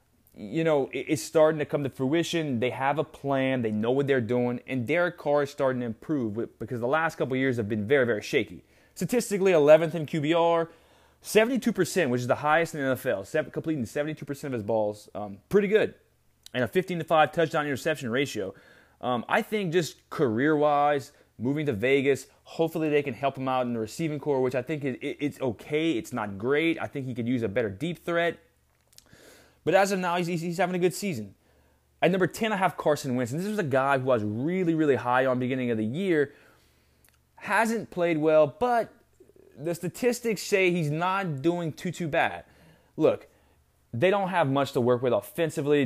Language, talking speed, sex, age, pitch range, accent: English, 200 wpm, male, 20-39, 125-170 Hz, American